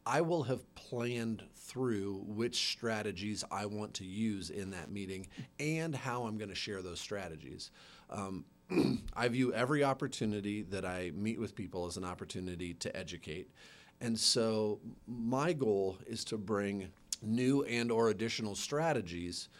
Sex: male